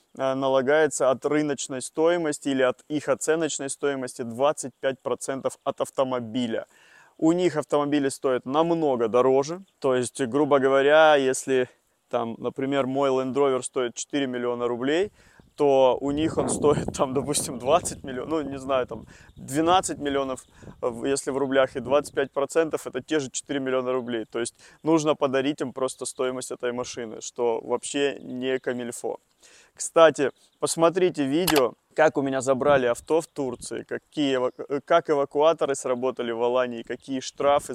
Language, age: Russian, 20-39